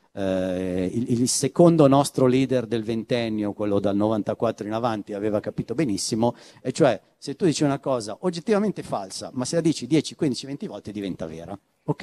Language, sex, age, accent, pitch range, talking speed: Italian, male, 50-69, native, 115-160 Hz, 170 wpm